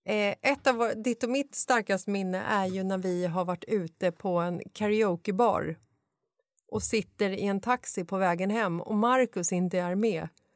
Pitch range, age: 175-225 Hz, 30-49